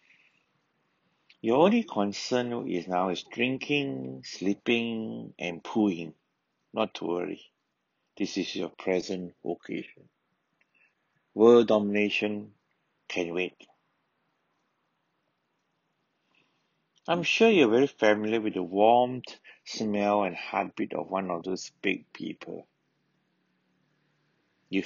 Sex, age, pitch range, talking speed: male, 60-79, 95-120 Hz, 95 wpm